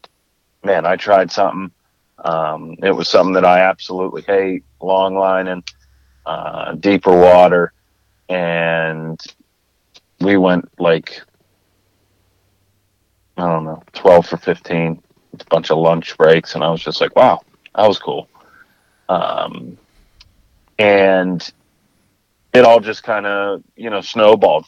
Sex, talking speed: male, 125 wpm